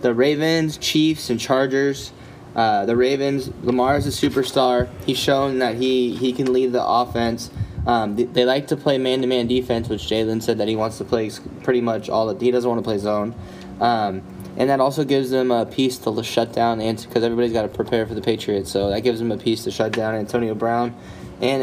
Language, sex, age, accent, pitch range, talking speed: English, male, 10-29, American, 105-125 Hz, 220 wpm